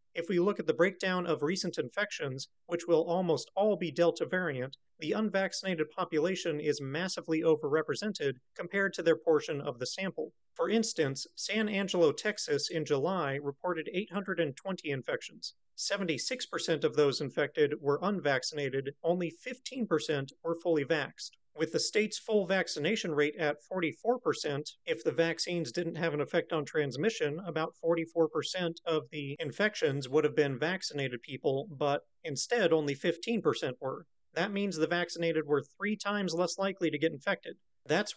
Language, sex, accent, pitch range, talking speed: English, male, American, 150-190 Hz, 150 wpm